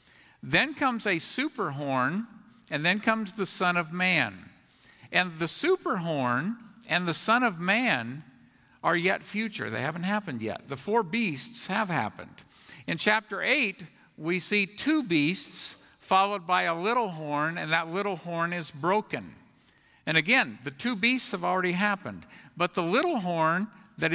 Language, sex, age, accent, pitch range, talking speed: English, male, 50-69, American, 160-220 Hz, 160 wpm